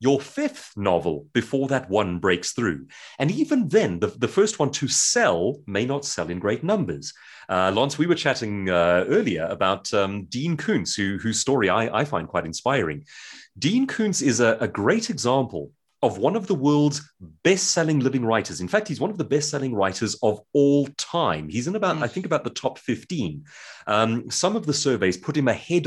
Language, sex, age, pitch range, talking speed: English, male, 30-49, 105-160 Hz, 195 wpm